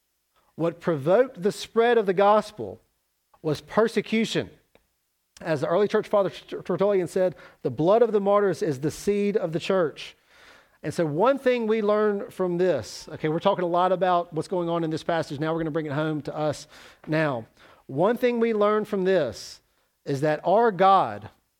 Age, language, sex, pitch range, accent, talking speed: 40-59, English, male, 160-205 Hz, American, 185 wpm